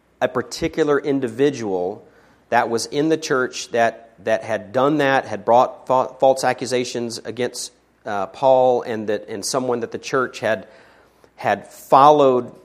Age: 40-59